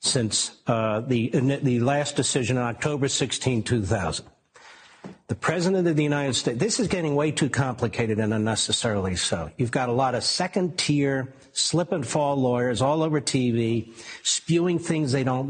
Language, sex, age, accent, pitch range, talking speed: English, male, 60-79, American, 125-175 Hz, 165 wpm